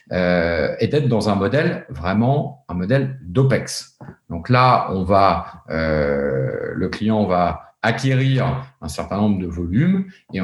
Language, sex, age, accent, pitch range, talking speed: French, male, 50-69, French, 95-130 Hz, 145 wpm